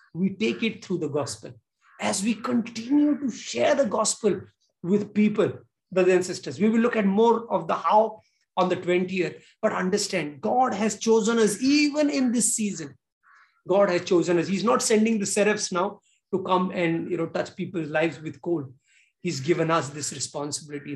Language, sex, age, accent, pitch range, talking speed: English, male, 50-69, Indian, 165-220 Hz, 185 wpm